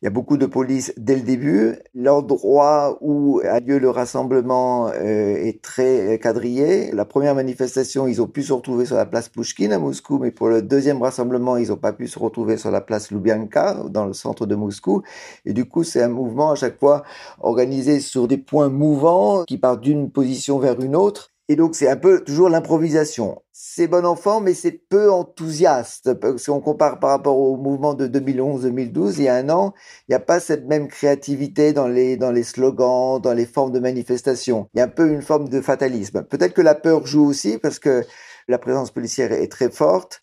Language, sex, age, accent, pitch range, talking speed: French, male, 50-69, French, 125-150 Hz, 210 wpm